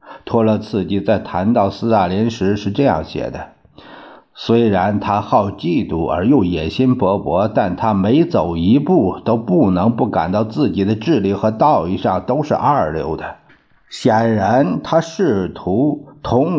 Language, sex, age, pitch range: Chinese, male, 50-69, 100-150 Hz